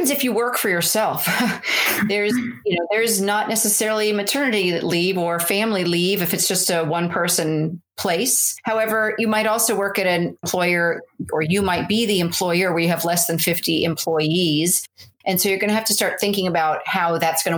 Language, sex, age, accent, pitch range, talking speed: English, female, 40-59, American, 170-210 Hz, 195 wpm